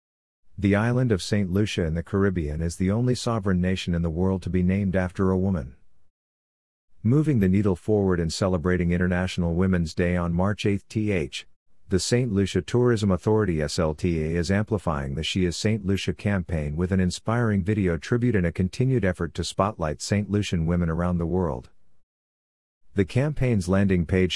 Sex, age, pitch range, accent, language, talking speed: male, 50-69, 85-100 Hz, American, English, 175 wpm